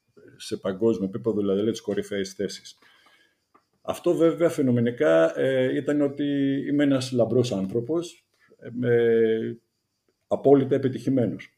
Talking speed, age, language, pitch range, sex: 95 wpm, 50-69, Greek, 105-130 Hz, male